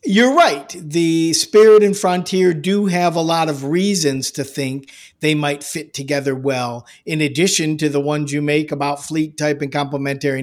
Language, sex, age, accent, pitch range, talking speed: English, male, 50-69, American, 140-175 Hz, 180 wpm